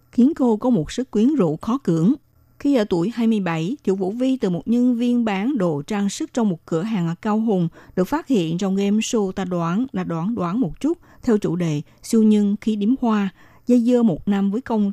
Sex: female